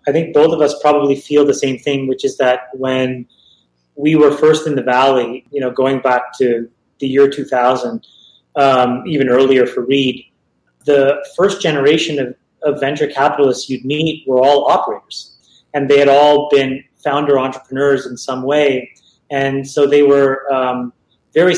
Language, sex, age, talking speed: English, male, 30-49, 170 wpm